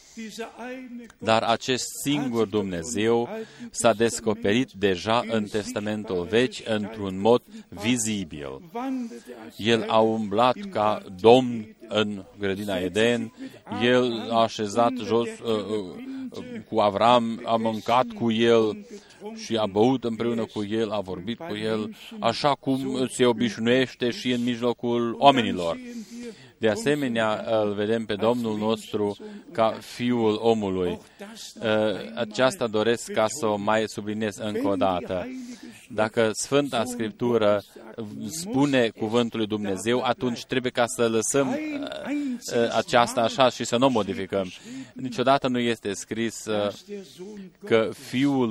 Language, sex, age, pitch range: Romanian, male, 40-59, 110-130 Hz